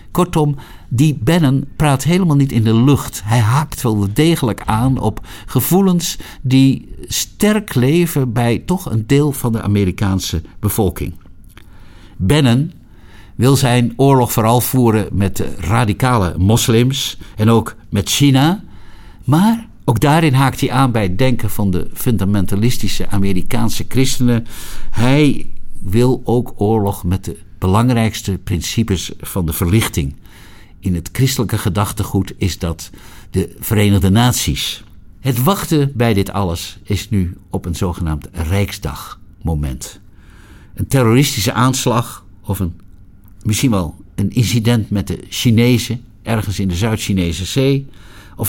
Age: 60-79